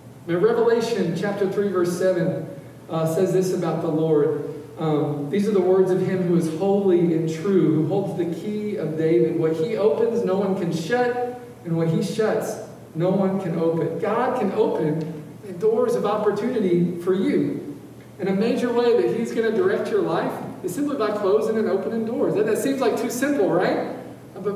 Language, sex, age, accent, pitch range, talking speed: English, male, 40-59, American, 170-220 Hz, 195 wpm